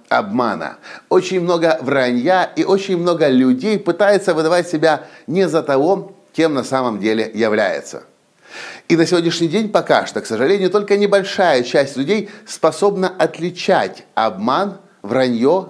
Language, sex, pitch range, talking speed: Russian, male, 130-195 Hz, 135 wpm